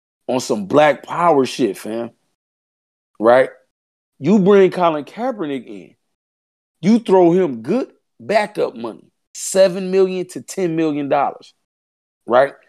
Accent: American